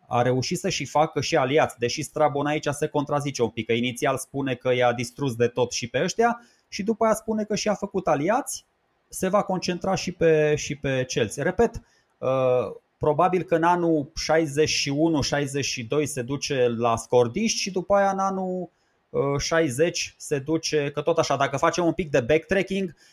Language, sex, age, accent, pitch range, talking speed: Romanian, male, 20-39, native, 130-170 Hz, 175 wpm